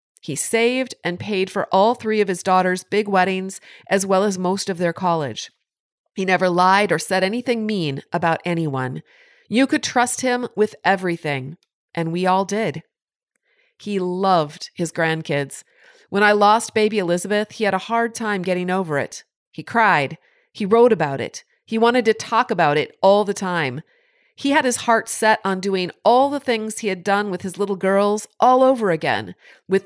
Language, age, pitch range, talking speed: English, 40-59, 175-230 Hz, 185 wpm